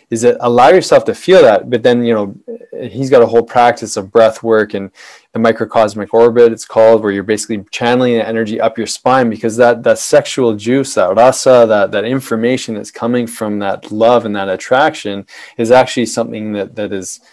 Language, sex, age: English, male, 20-39